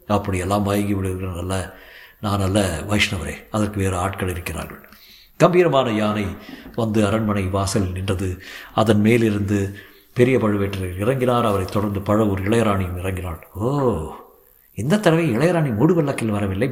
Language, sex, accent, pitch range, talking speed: Tamil, male, native, 100-125 Hz, 120 wpm